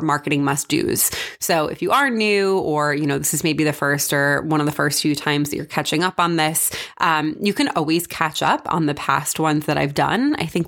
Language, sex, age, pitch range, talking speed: English, female, 20-39, 150-185 Hz, 240 wpm